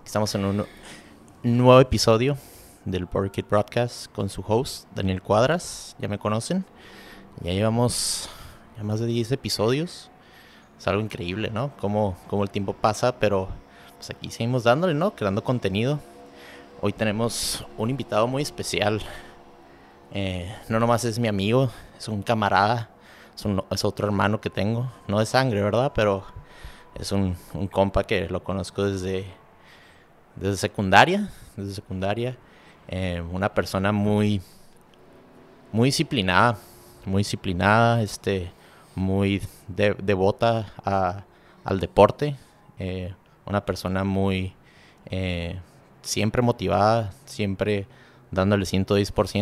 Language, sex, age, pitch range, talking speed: Spanish, male, 30-49, 95-115 Hz, 120 wpm